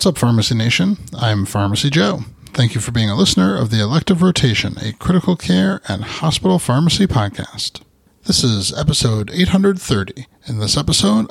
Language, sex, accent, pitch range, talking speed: English, male, American, 110-150 Hz, 165 wpm